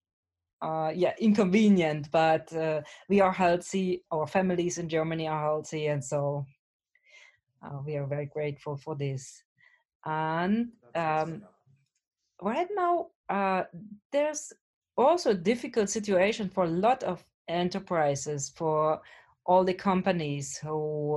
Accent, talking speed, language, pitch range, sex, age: German, 120 wpm, German, 160-215 Hz, female, 30-49